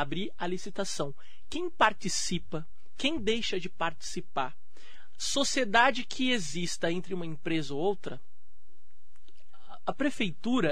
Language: Portuguese